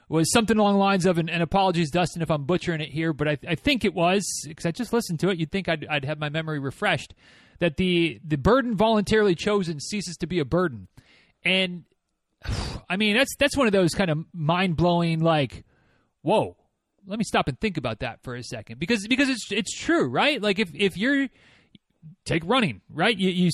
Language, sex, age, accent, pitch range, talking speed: English, male, 30-49, American, 165-225 Hz, 215 wpm